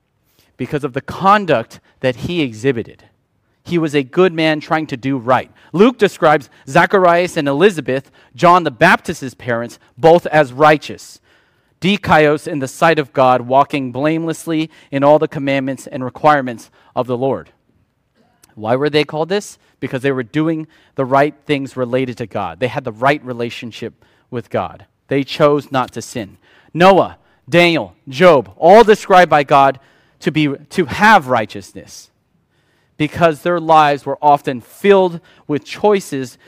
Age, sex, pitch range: 30-49, male, 125-165 Hz